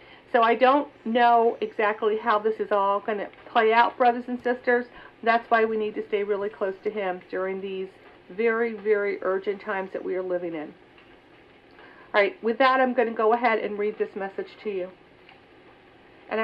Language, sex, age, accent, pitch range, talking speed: English, female, 50-69, American, 215-260 Hz, 195 wpm